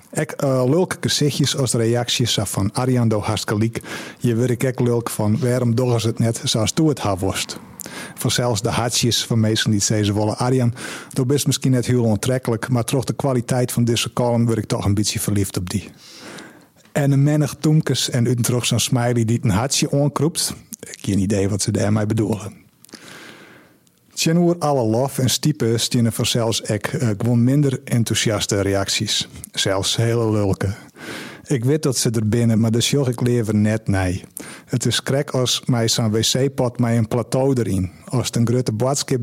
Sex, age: male, 50-69